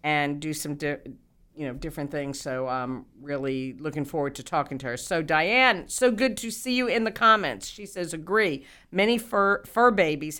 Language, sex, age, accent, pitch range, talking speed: English, female, 50-69, American, 135-175 Hz, 200 wpm